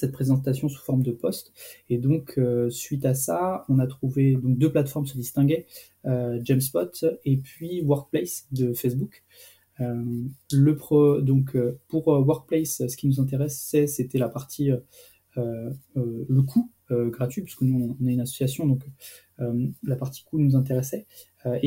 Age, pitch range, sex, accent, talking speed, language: 20-39, 125-145 Hz, male, French, 175 wpm, French